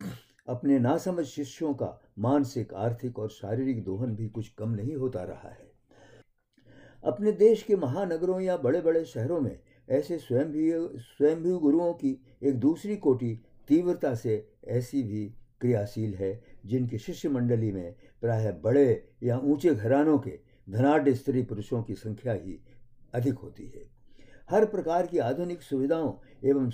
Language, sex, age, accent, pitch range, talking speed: Hindi, male, 60-79, native, 115-150 Hz, 145 wpm